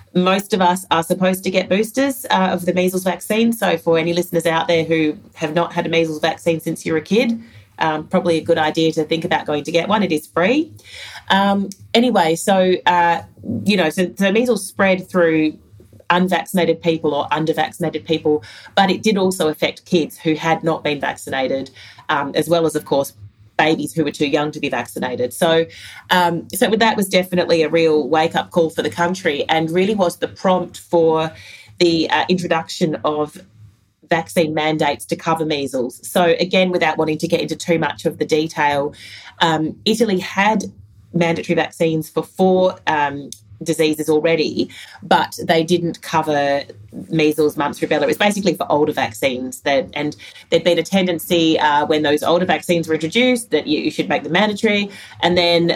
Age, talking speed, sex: 30-49, 185 wpm, female